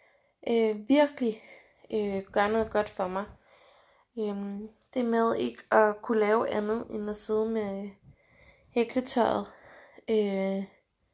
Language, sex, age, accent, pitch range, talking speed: Danish, female, 20-39, native, 200-240 Hz, 125 wpm